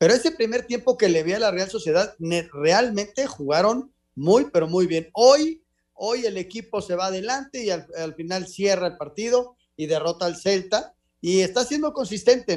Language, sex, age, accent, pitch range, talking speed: Spanish, male, 30-49, Mexican, 180-230 Hz, 185 wpm